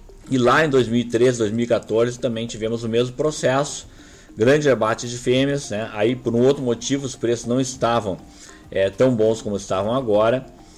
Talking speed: 165 wpm